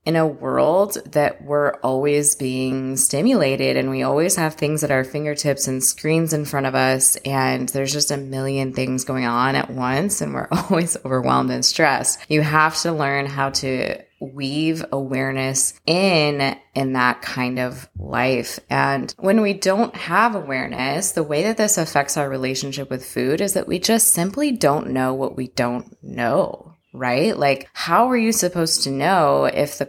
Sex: female